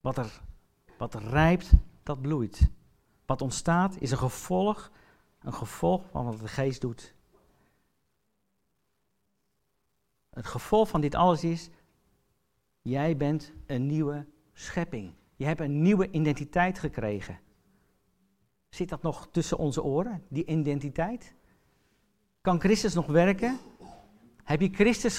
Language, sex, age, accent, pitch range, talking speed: English, male, 50-69, Dutch, 150-220 Hz, 120 wpm